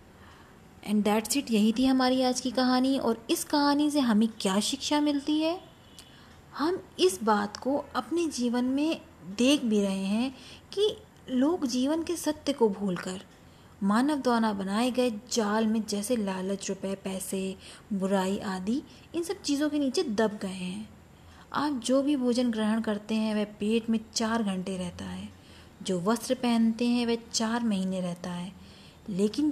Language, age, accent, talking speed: Hindi, 20-39, native, 165 wpm